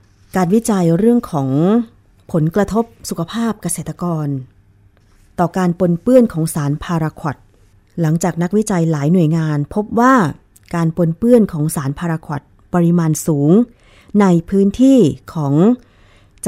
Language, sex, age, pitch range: Thai, female, 20-39, 140-190 Hz